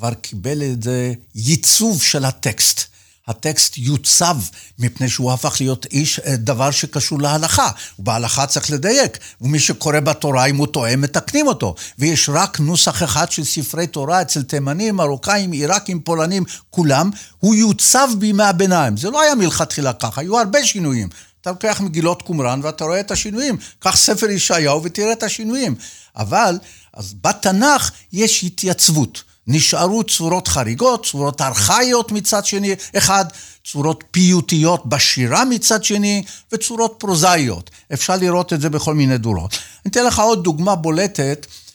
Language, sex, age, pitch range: Hebrew, male, 60-79, 125-195 Hz